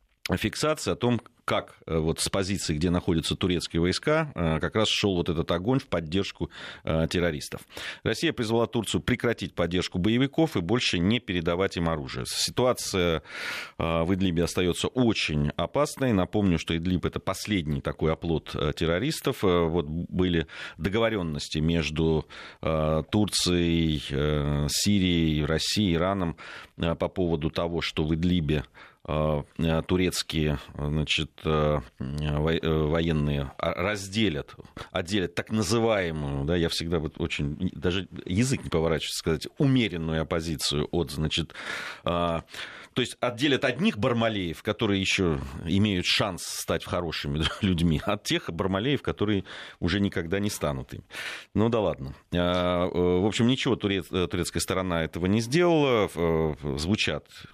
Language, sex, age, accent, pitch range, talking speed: Russian, male, 30-49, native, 80-100 Hz, 120 wpm